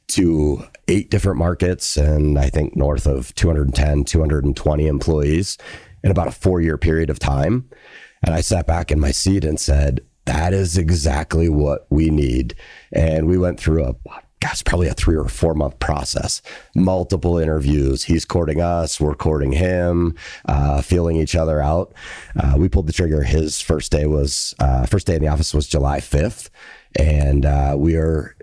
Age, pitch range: 30-49, 70-85 Hz